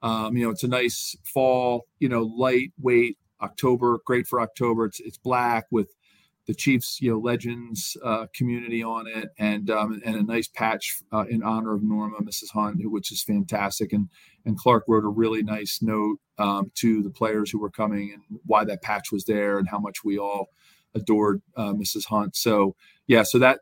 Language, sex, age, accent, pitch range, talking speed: English, male, 40-59, American, 110-130 Hz, 200 wpm